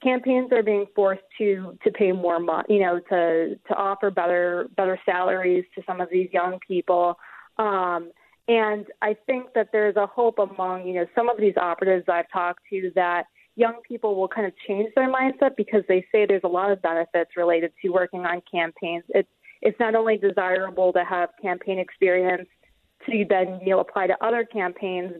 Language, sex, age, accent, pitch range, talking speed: English, female, 20-39, American, 185-210 Hz, 190 wpm